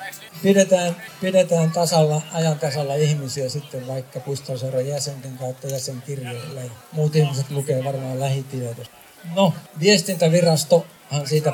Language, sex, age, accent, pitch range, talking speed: Finnish, male, 60-79, native, 135-165 Hz, 110 wpm